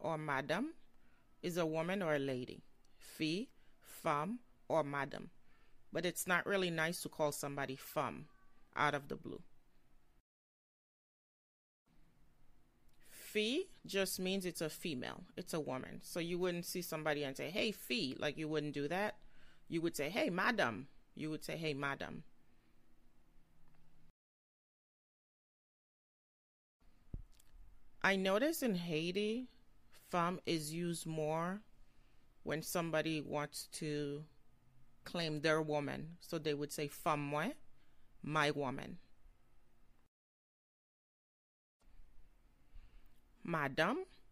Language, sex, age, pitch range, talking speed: English, female, 30-49, 135-175 Hz, 110 wpm